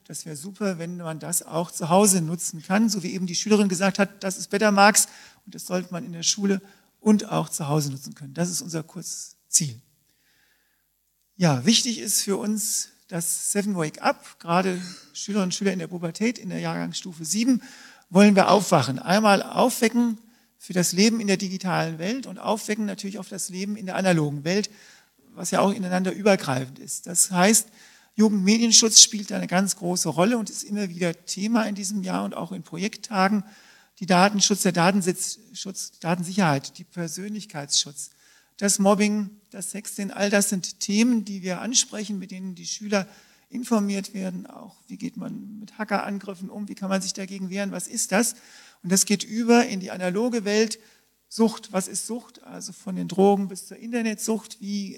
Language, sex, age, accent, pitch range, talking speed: English, male, 40-59, German, 180-215 Hz, 185 wpm